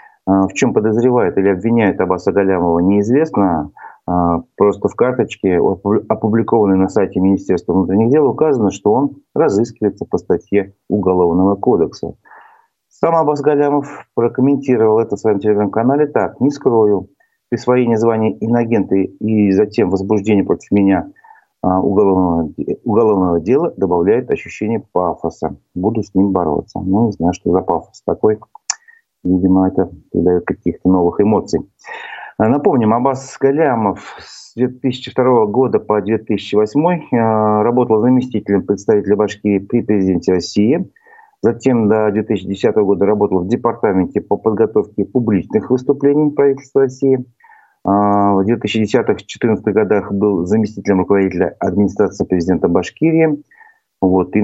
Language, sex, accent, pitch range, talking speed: Russian, male, native, 95-125 Hz, 120 wpm